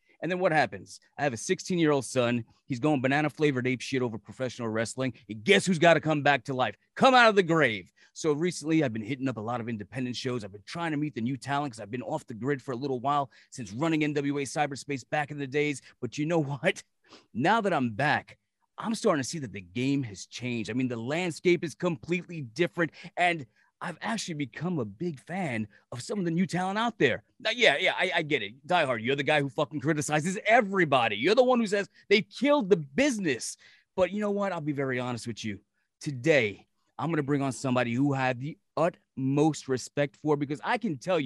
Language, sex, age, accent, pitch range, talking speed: English, male, 30-49, American, 130-175 Hz, 230 wpm